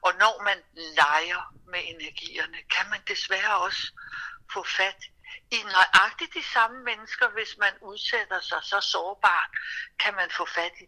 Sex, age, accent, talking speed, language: female, 60-79, native, 155 wpm, Danish